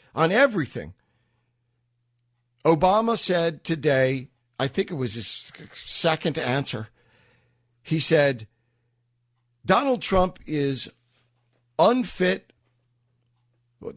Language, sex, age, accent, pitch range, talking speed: English, male, 50-69, American, 120-170 Hz, 75 wpm